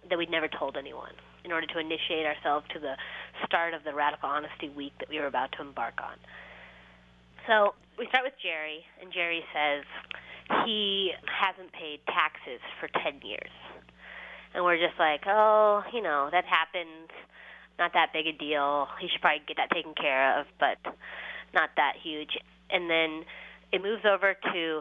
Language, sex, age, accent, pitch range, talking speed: English, female, 20-39, American, 140-180 Hz, 175 wpm